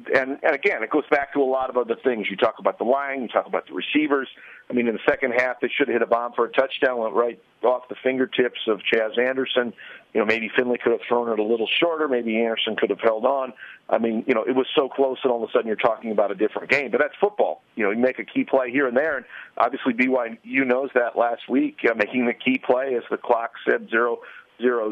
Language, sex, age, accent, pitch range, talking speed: English, male, 50-69, American, 115-140 Hz, 270 wpm